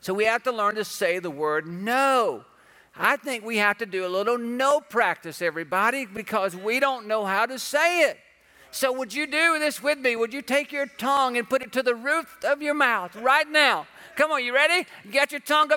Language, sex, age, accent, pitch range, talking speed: English, male, 50-69, American, 270-340 Hz, 230 wpm